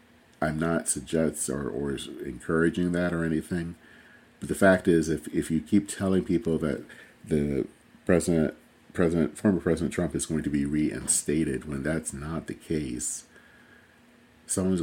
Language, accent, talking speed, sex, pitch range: English, American, 155 wpm, male, 75-95 Hz